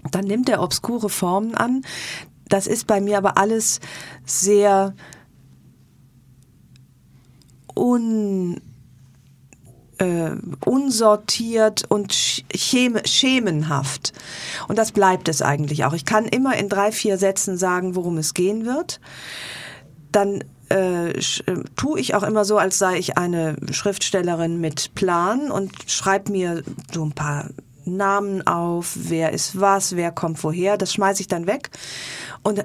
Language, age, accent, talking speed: German, 40-59, German, 130 wpm